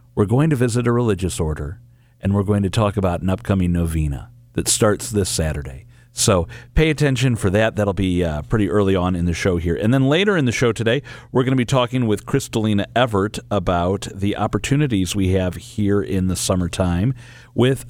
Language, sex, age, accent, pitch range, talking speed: English, male, 40-59, American, 90-115 Hz, 200 wpm